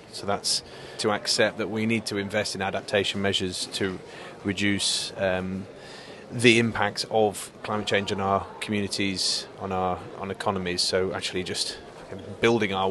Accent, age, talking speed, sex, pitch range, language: British, 30-49, 150 wpm, male, 95-110 Hz, English